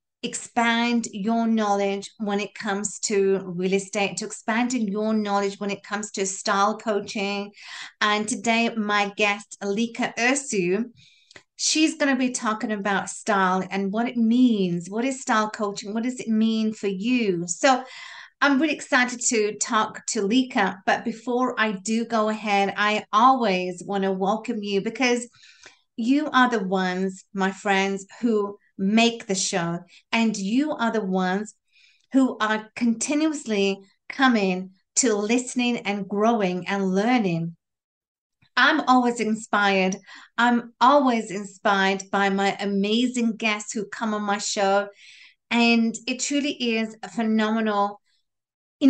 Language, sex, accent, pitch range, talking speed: English, female, British, 200-240 Hz, 140 wpm